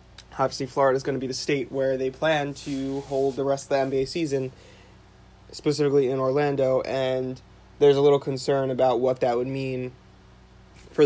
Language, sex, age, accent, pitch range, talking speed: English, male, 20-39, American, 125-140 Hz, 180 wpm